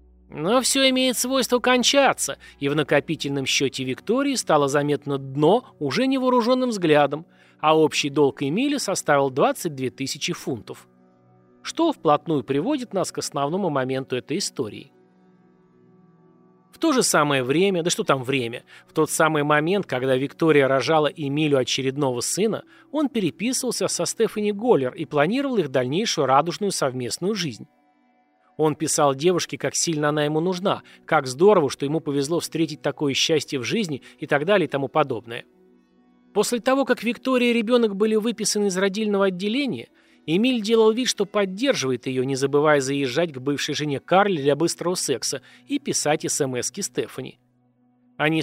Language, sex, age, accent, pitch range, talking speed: Russian, male, 30-49, native, 140-205 Hz, 150 wpm